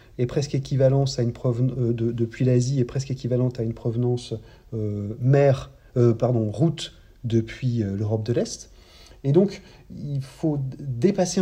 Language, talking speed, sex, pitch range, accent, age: English, 165 wpm, male, 120-150 Hz, French, 40-59